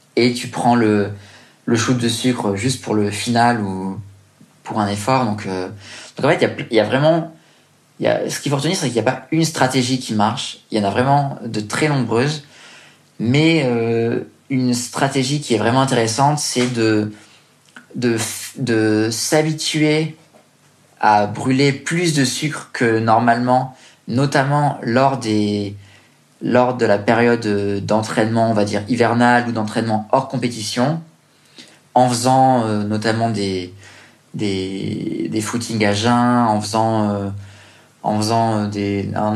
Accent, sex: French, male